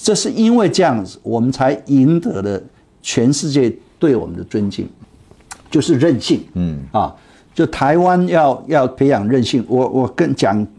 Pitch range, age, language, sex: 105-160 Hz, 50-69, Chinese, male